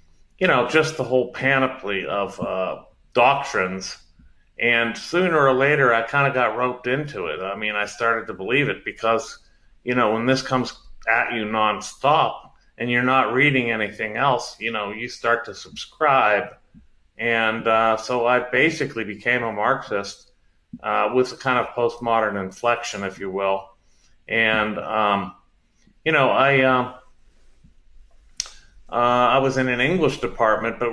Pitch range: 100-125 Hz